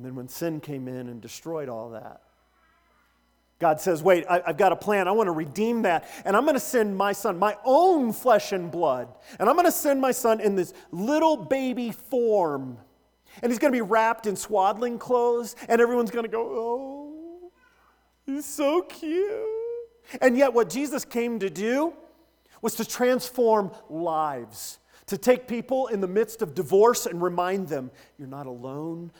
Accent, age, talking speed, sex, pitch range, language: American, 40-59, 175 wpm, male, 165-245 Hz, English